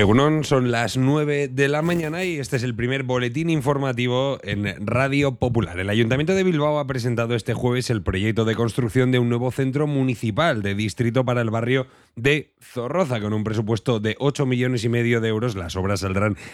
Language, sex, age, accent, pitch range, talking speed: Spanish, male, 30-49, Spanish, 115-140 Hz, 190 wpm